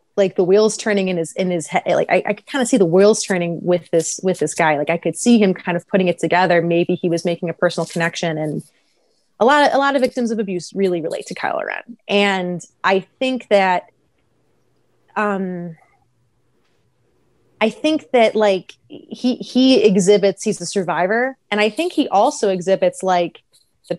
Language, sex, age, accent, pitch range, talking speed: English, female, 30-49, American, 175-220 Hz, 200 wpm